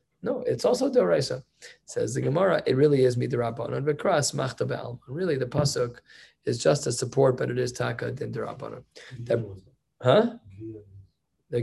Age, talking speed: 20-39, 145 wpm